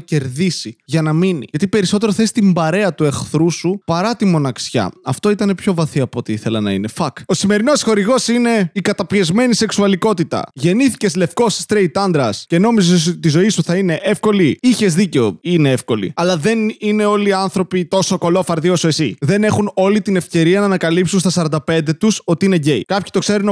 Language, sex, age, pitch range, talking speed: Greek, male, 20-39, 165-205 Hz, 190 wpm